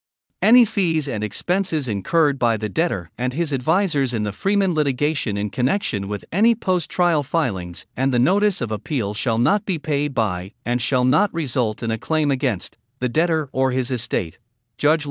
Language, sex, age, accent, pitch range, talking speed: English, male, 50-69, American, 115-170 Hz, 180 wpm